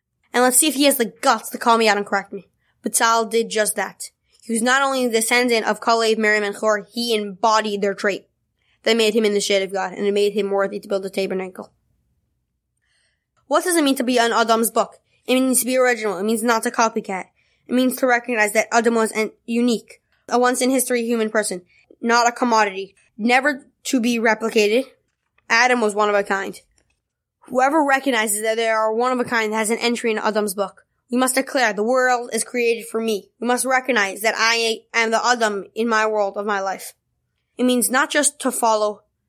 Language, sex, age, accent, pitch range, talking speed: English, female, 10-29, American, 210-245 Hz, 220 wpm